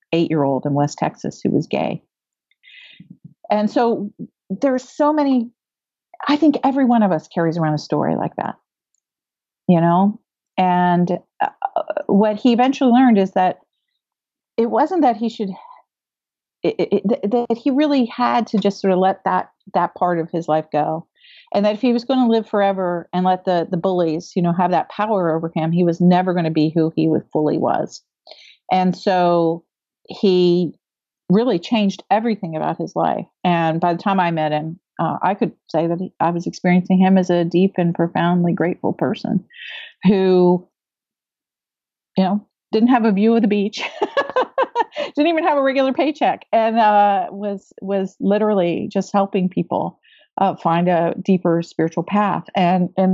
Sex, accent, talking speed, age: female, American, 175 wpm, 40-59